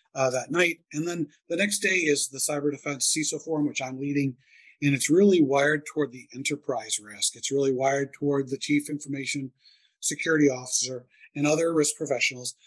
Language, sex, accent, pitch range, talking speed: English, male, American, 135-155 Hz, 180 wpm